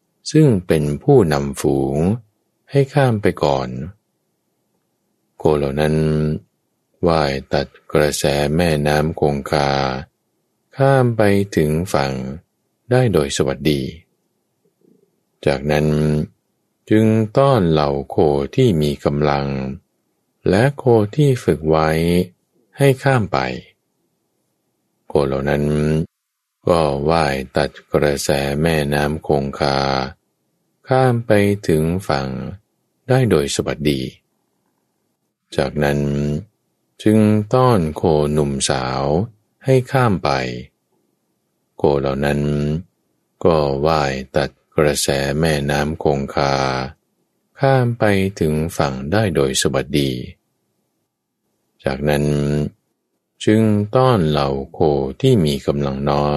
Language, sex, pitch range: Thai, male, 70-105 Hz